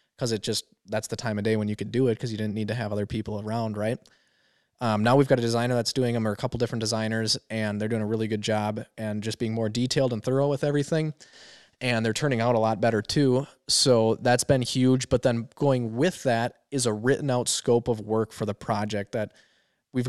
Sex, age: male, 20-39